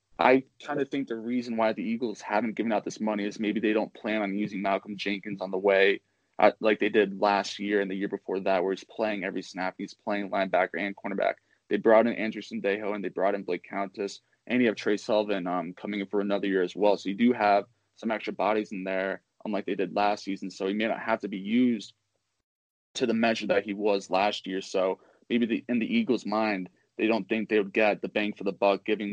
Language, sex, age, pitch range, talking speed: English, male, 20-39, 95-110 Hz, 245 wpm